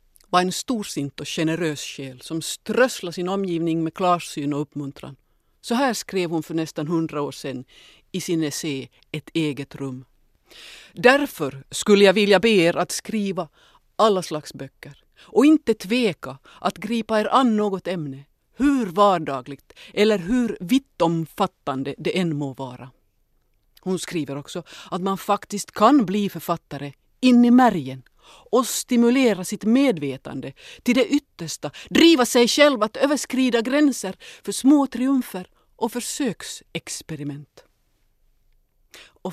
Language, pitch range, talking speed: Swedish, 155-220 Hz, 135 wpm